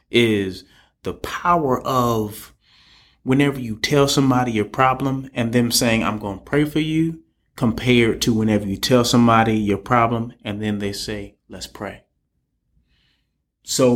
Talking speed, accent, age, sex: 145 wpm, American, 30-49, male